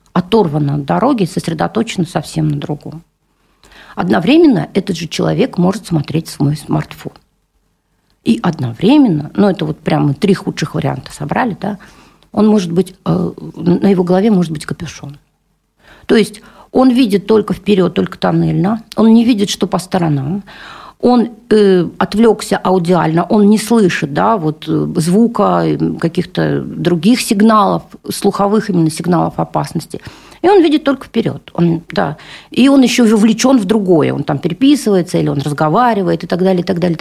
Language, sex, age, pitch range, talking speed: Russian, female, 50-69, 165-215 Hz, 150 wpm